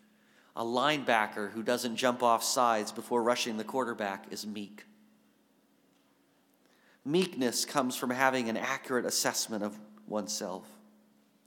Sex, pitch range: male, 110-140 Hz